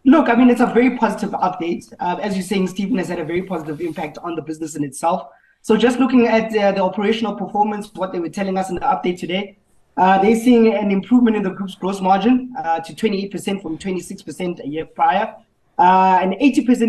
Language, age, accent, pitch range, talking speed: English, 20-39, South African, 175-220 Hz, 215 wpm